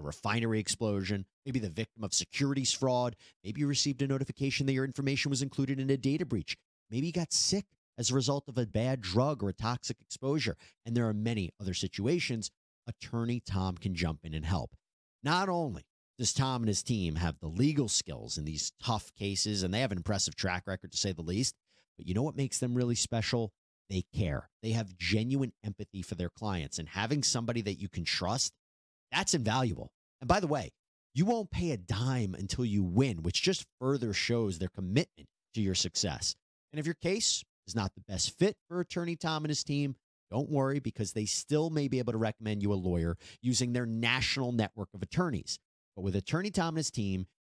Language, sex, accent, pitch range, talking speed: English, male, American, 95-135 Hz, 210 wpm